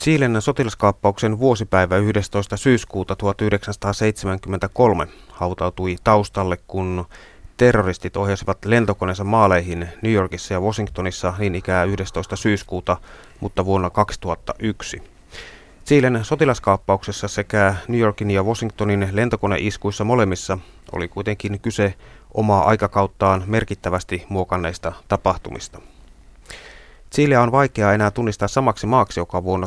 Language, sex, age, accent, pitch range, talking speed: Finnish, male, 30-49, native, 90-105 Hz, 100 wpm